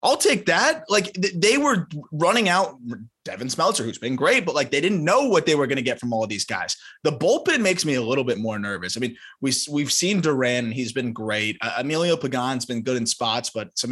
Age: 20-39